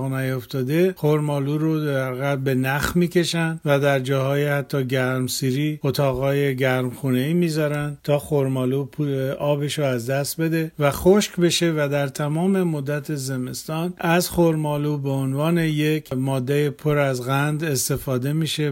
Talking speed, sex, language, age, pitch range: 130 wpm, male, Persian, 50-69, 135-155 Hz